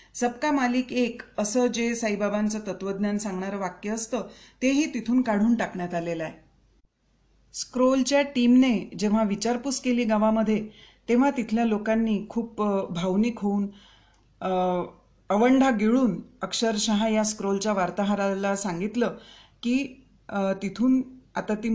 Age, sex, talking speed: 40-59, female, 100 wpm